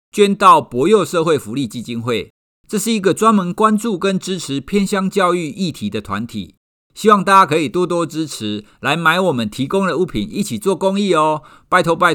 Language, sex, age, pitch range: Chinese, male, 50-69, 140-205 Hz